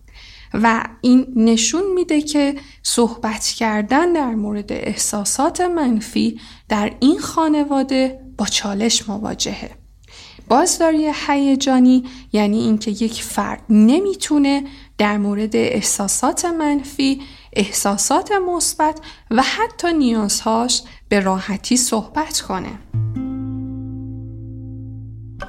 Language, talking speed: Persian, 85 wpm